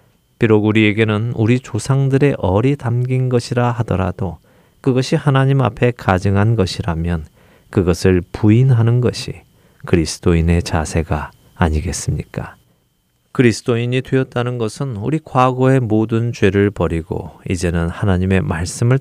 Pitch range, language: 95-120 Hz, Korean